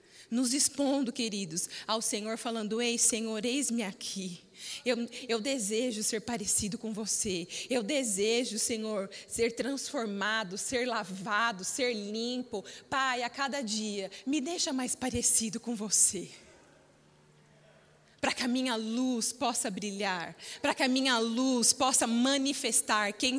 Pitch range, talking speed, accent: 225-275 Hz, 130 wpm, Brazilian